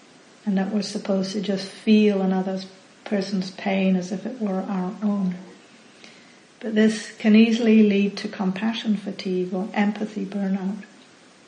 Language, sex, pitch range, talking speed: English, female, 190-215 Hz, 140 wpm